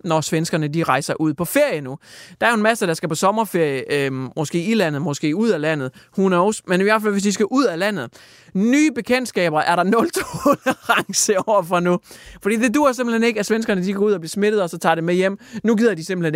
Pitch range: 165-225 Hz